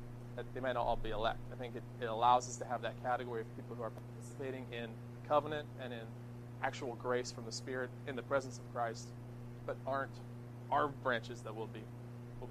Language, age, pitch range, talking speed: English, 20-39, 120-125 Hz, 210 wpm